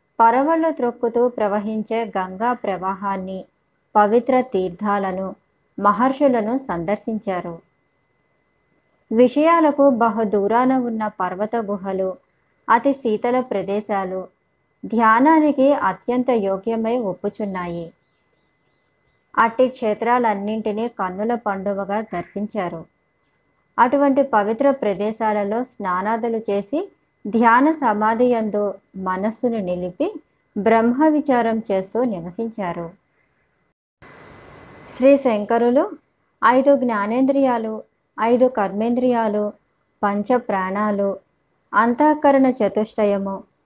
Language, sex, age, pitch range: Telugu, male, 20-39, 200-245 Hz